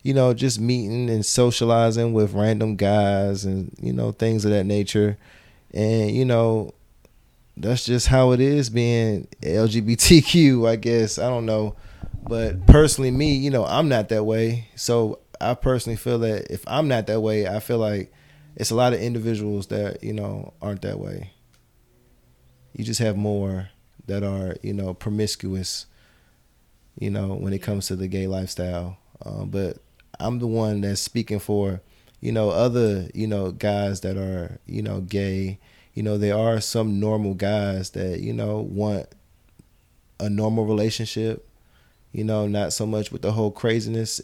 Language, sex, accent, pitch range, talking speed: English, male, American, 100-115 Hz, 170 wpm